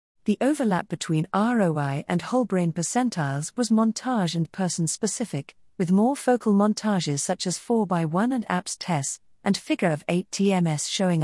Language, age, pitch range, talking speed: English, 40-59, 160-220 Hz, 145 wpm